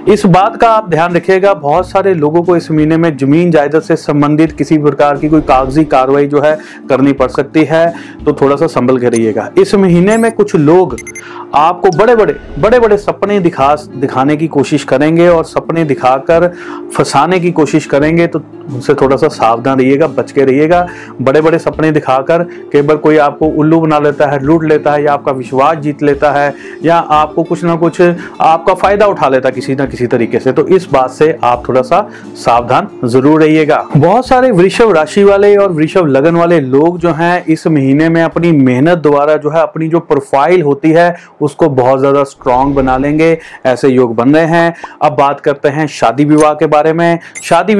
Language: Hindi